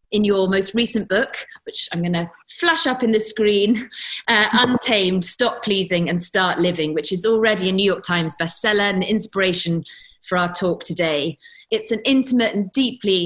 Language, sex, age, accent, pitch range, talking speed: English, female, 30-49, British, 170-210 Hz, 175 wpm